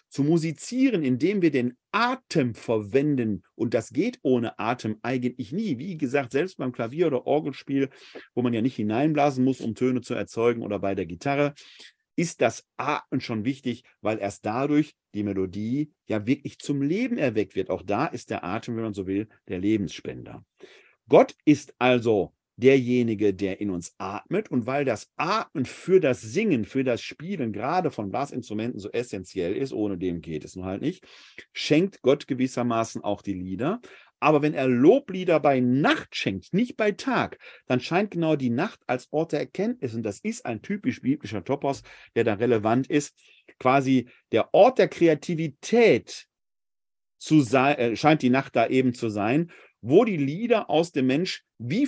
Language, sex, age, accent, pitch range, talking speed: German, male, 40-59, German, 110-155 Hz, 175 wpm